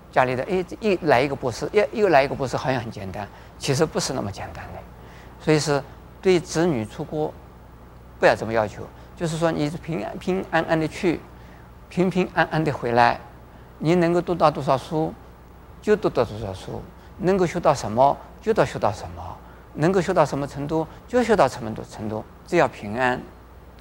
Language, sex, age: Chinese, male, 50-69